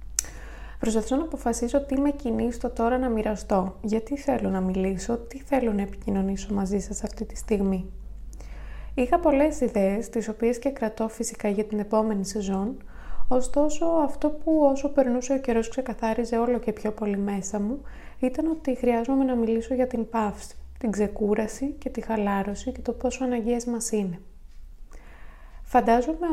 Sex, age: female, 20-39